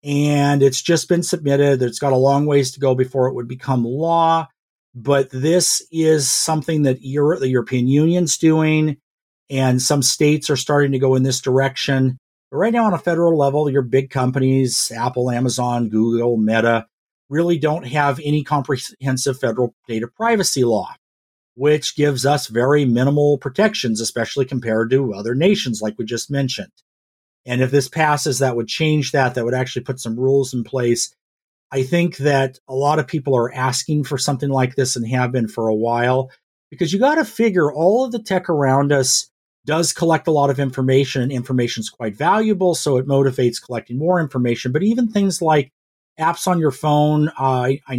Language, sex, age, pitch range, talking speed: English, male, 50-69, 125-150 Hz, 185 wpm